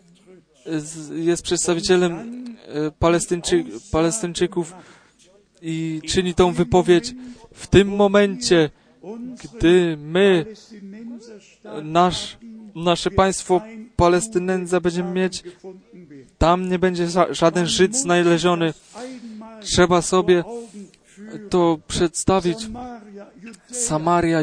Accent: native